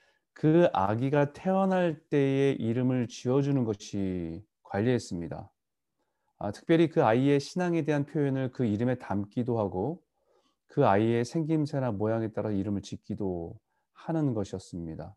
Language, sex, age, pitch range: Korean, male, 30-49, 105-150 Hz